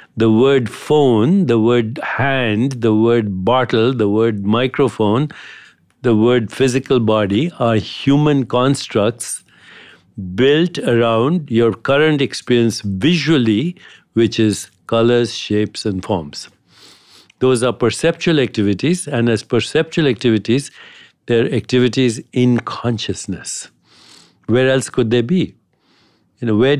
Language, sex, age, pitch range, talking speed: English, male, 60-79, 110-140 Hz, 115 wpm